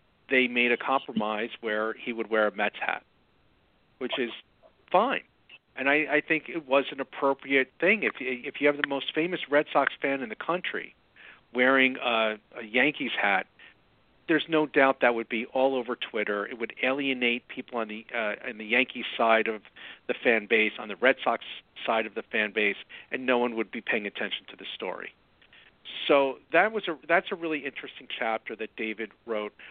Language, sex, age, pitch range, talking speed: English, male, 50-69, 115-150 Hz, 190 wpm